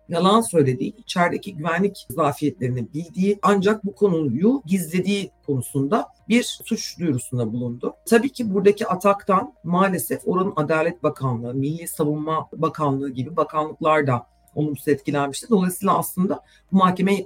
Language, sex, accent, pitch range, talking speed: Turkish, female, native, 140-185 Hz, 120 wpm